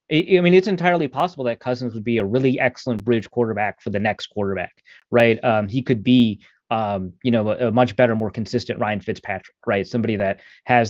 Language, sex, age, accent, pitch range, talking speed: English, male, 30-49, American, 105-125 Hz, 210 wpm